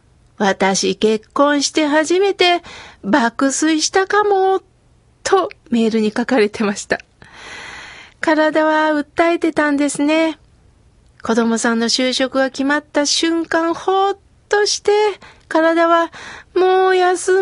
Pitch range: 250-335 Hz